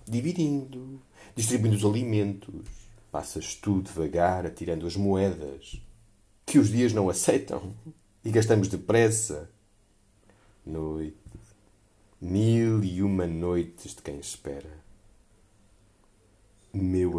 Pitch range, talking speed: 90-110 Hz, 95 wpm